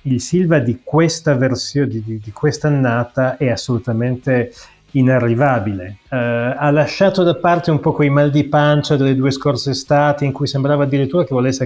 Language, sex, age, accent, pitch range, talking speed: Italian, male, 30-49, native, 125-155 Hz, 160 wpm